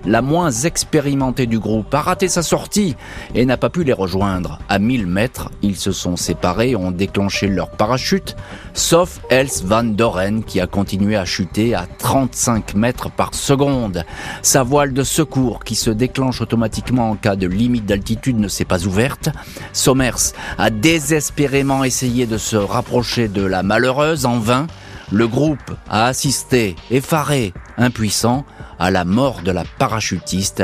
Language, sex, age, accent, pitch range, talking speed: French, male, 30-49, French, 95-130 Hz, 160 wpm